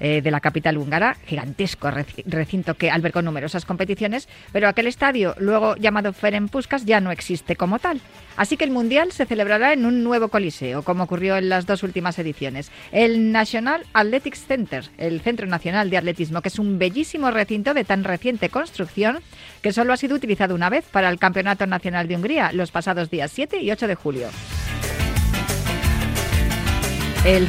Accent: Spanish